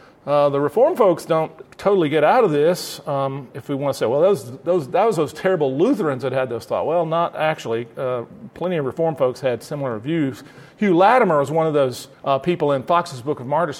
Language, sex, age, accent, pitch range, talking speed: English, male, 40-59, American, 130-165 Hz, 225 wpm